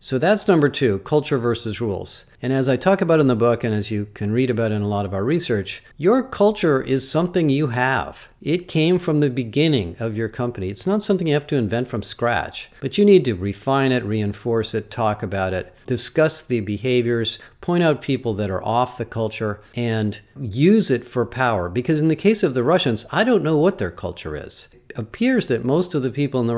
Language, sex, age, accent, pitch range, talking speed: English, male, 50-69, American, 110-145 Hz, 225 wpm